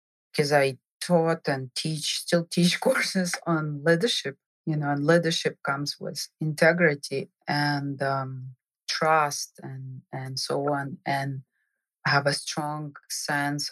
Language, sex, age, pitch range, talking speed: English, female, 30-49, 140-165 Hz, 130 wpm